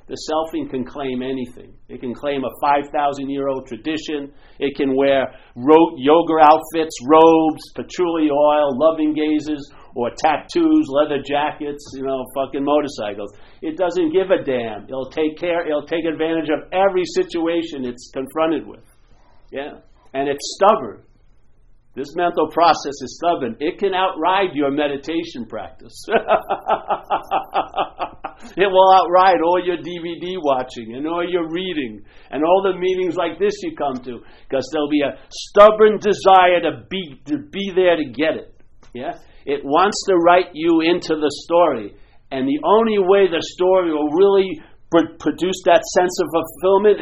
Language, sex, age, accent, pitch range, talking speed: English, male, 50-69, American, 140-180 Hz, 150 wpm